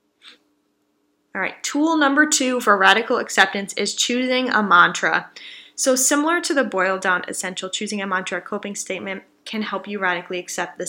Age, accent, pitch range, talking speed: 10-29, American, 190-245 Hz, 160 wpm